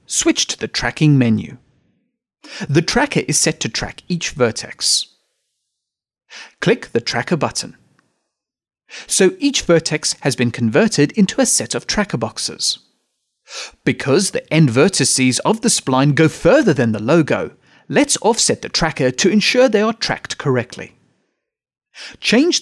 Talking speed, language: 140 wpm, English